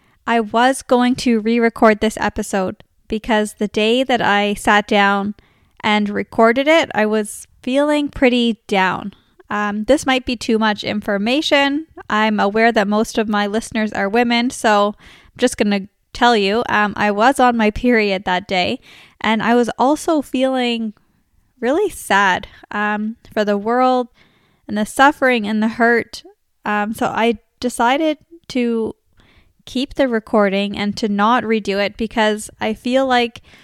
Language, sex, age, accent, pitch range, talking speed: English, female, 10-29, American, 210-245 Hz, 155 wpm